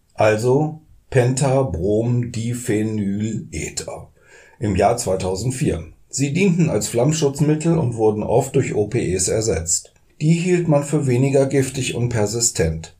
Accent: German